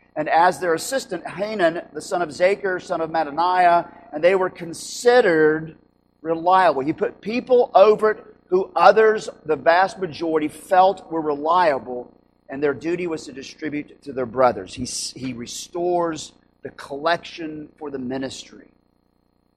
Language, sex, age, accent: English, male, 40-59, American